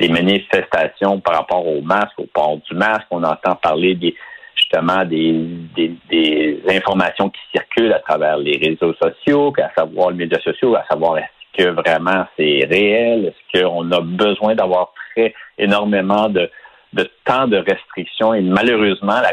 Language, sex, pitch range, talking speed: French, male, 90-110 Hz, 160 wpm